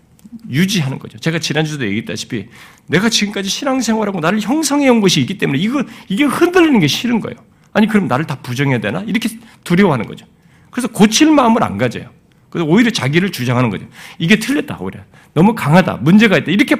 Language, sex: Korean, male